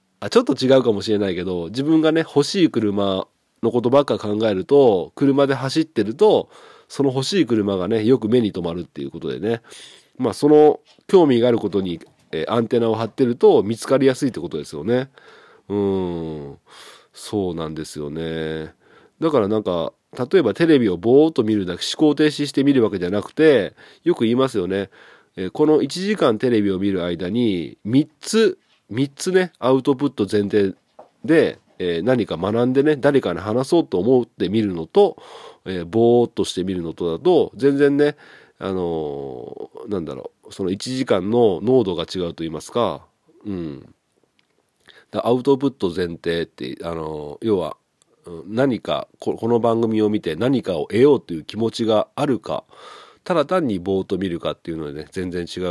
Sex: male